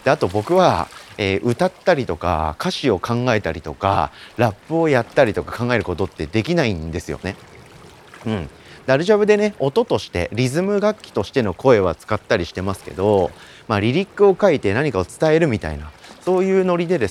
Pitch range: 90-140 Hz